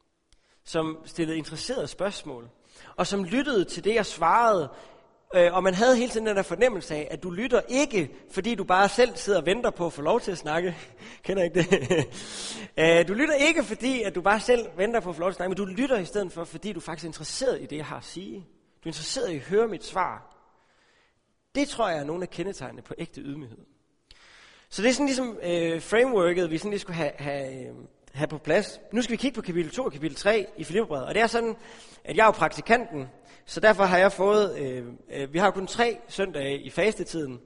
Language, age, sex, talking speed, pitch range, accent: Danish, 30-49, male, 235 wpm, 160-215 Hz, native